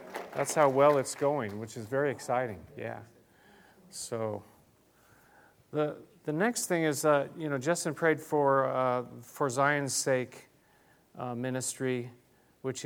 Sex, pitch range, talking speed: male, 120-145 Hz, 135 wpm